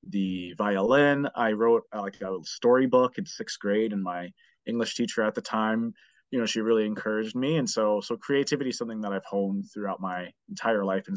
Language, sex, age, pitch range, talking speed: English, male, 30-49, 105-135 Hz, 200 wpm